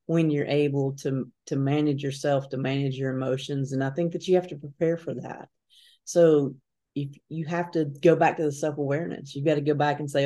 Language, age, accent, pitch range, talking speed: English, 40-59, American, 135-150 Hz, 220 wpm